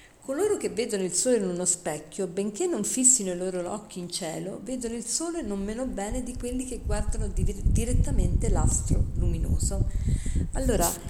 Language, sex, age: Italian, female, 40-59